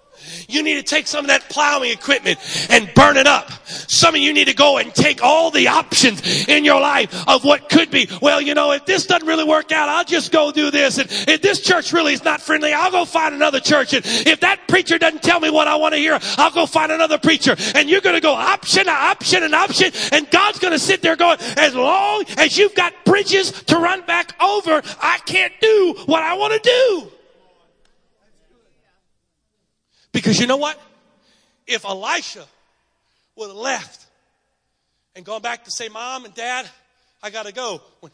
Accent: American